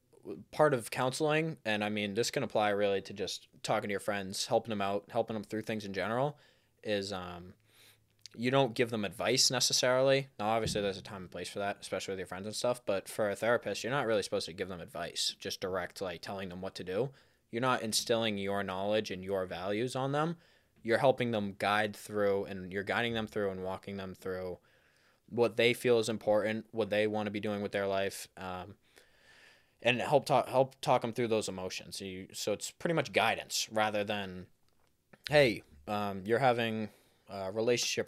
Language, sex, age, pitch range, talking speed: English, male, 20-39, 95-115 Hz, 205 wpm